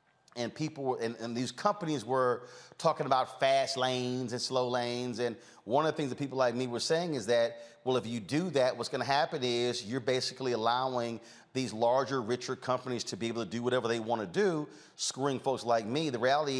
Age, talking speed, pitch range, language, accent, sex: 40-59, 220 wpm, 120-140 Hz, English, American, male